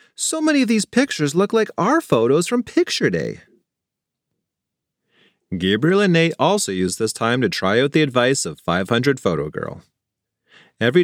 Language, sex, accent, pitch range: English, male, American, 115-195 Hz